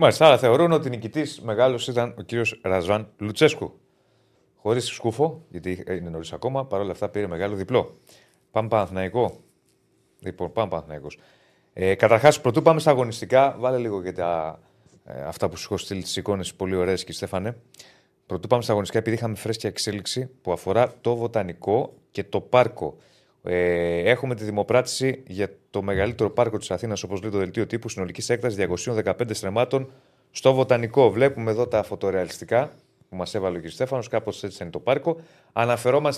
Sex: male